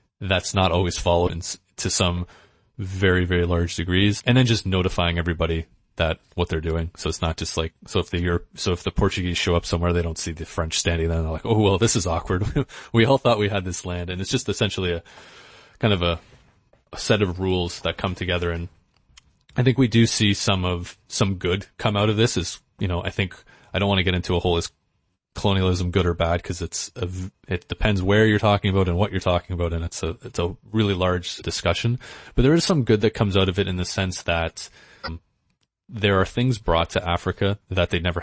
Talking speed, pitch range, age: 235 wpm, 85-100 Hz, 30-49